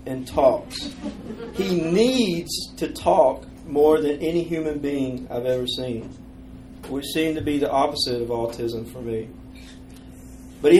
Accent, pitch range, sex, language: American, 125-155 Hz, male, English